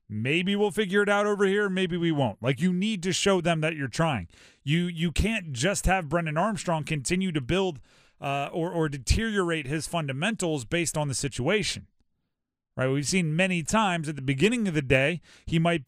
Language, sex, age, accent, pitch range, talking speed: English, male, 30-49, American, 145-200 Hz, 195 wpm